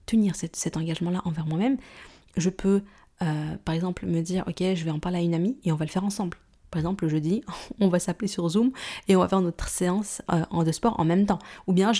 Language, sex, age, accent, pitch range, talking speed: French, female, 20-39, French, 165-195 Hz, 260 wpm